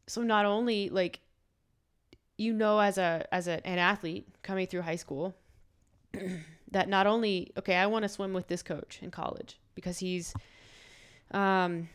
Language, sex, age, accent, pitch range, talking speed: English, female, 20-39, American, 175-195 Hz, 160 wpm